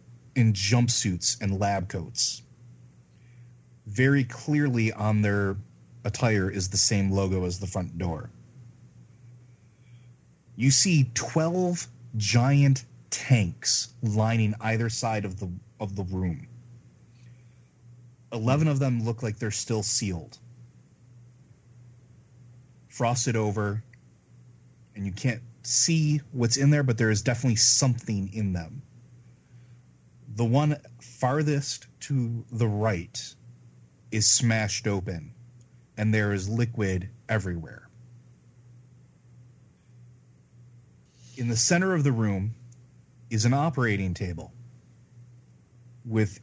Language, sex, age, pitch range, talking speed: English, male, 30-49, 110-125 Hz, 105 wpm